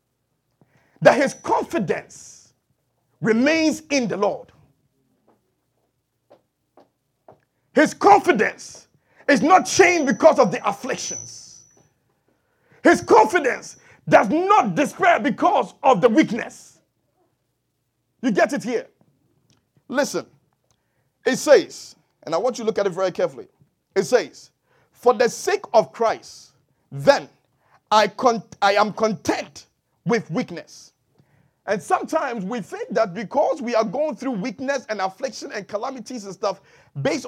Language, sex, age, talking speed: English, male, 50-69, 120 wpm